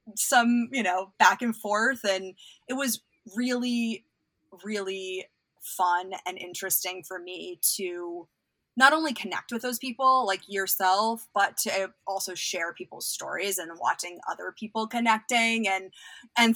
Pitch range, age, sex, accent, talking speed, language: 180-230 Hz, 20-39, female, American, 140 wpm, English